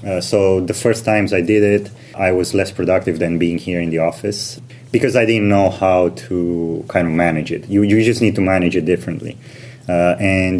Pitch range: 95-115 Hz